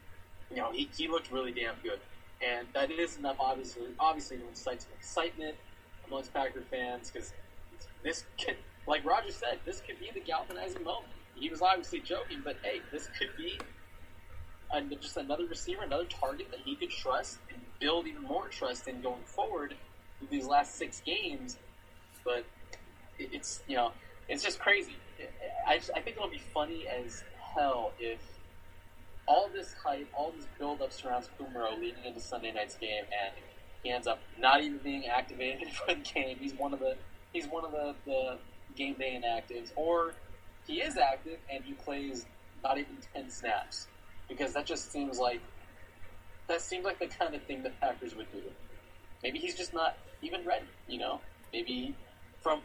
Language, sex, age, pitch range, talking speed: English, male, 20-39, 105-165 Hz, 175 wpm